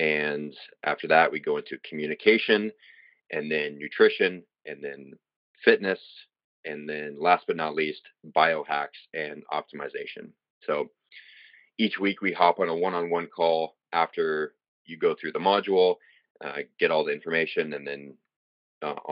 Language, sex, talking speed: English, male, 150 wpm